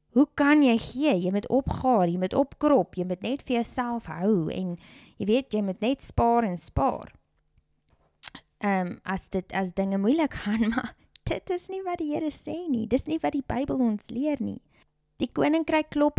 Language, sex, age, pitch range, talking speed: English, female, 20-39, 200-265 Hz, 195 wpm